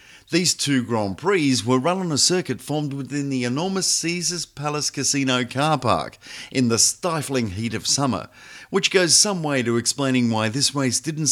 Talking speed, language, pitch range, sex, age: 180 wpm, Italian, 110-155 Hz, male, 50-69